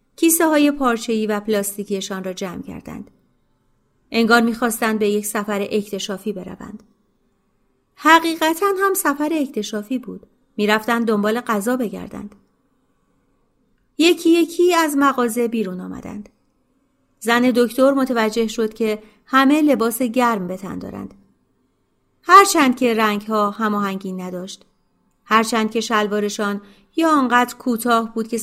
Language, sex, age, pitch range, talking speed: Persian, female, 30-49, 205-250 Hz, 115 wpm